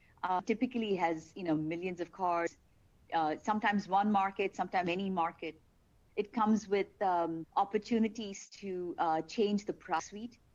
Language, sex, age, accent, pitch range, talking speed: English, female, 50-69, Indian, 170-215 Hz, 150 wpm